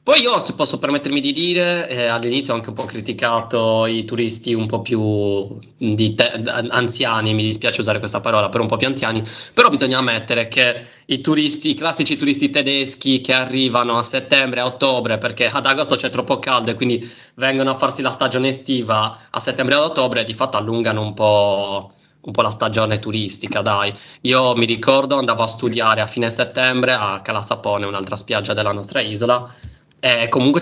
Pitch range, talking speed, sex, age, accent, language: 110-130 Hz, 185 wpm, male, 20-39, native, Italian